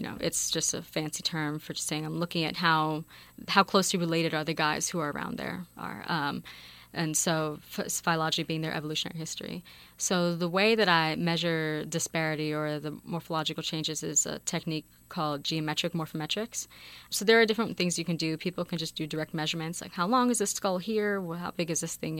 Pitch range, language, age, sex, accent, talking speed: 155-175 Hz, English, 20-39, female, American, 210 wpm